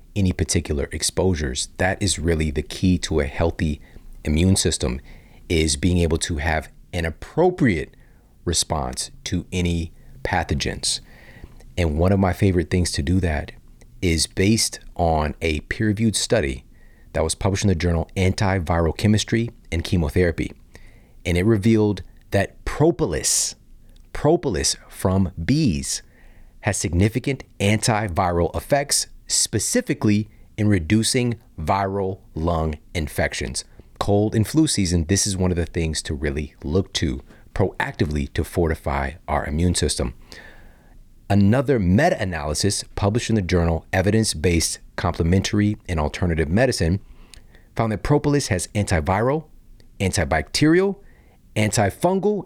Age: 40-59